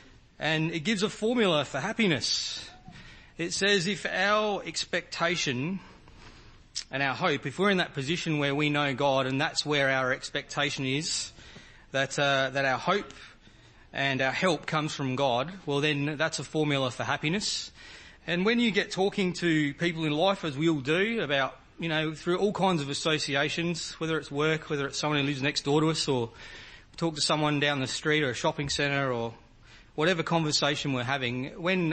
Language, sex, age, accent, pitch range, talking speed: English, male, 30-49, Australian, 135-170 Hz, 185 wpm